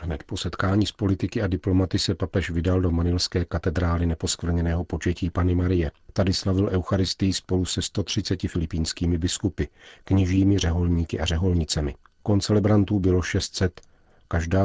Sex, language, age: male, Czech, 40-59